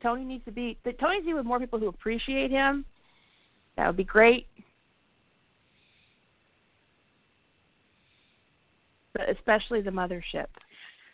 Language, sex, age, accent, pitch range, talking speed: English, female, 40-59, American, 180-215 Hz, 110 wpm